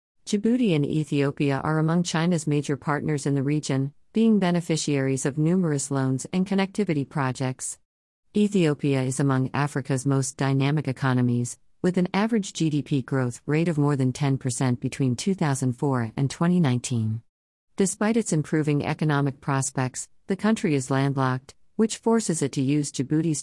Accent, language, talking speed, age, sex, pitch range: American, English, 140 wpm, 40-59, female, 130-160 Hz